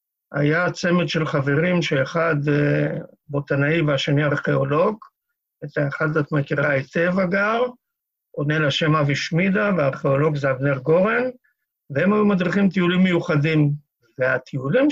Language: Hebrew